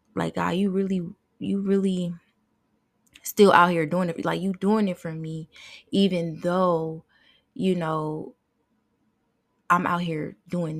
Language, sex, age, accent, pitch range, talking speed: English, female, 20-39, American, 160-185 Hz, 140 wpm